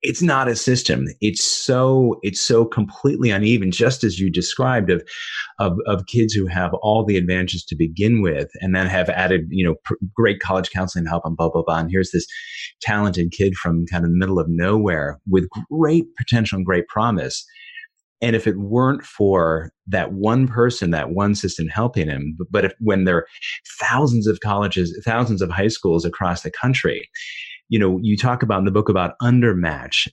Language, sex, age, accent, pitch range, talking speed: English, male, 30-49, American, 90-120 Hz, 195 wpm